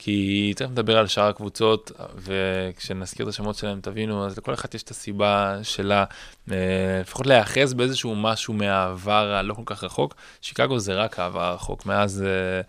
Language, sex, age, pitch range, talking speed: Hebrew, male, 20-39, 100-110 Hz, 155 wpm